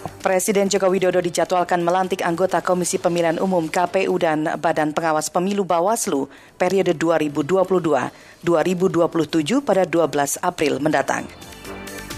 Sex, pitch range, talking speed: female, 155-195 Hz, 105 wpm